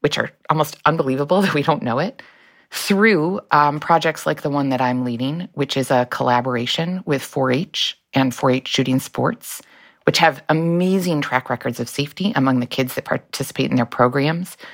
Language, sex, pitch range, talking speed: English, female, 125-160 Hz, 175 wpm